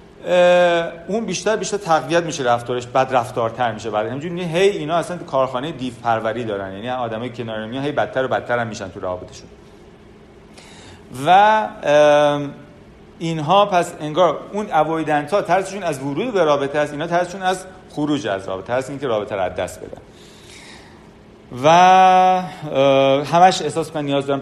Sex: male